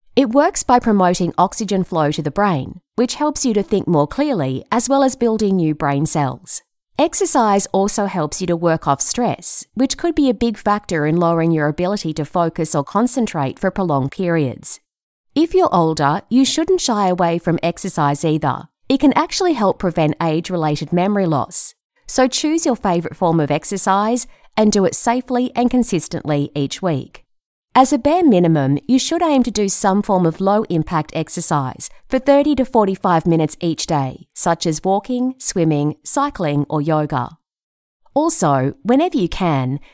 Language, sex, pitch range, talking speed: English, female, 155-245 Hz, 170 wpm